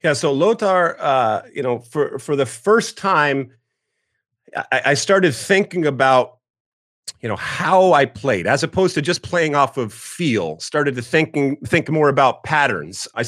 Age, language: 30-49, English